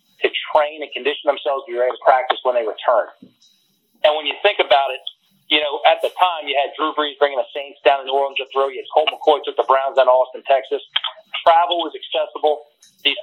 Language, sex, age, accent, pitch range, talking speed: English, male, 40-59, American, 140-205 Hz, 235 wpm